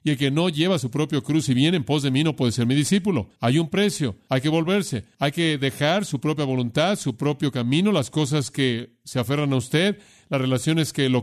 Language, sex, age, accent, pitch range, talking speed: Spanish, male, 40-59, Mexican, 120-160 Hz, 240 wpm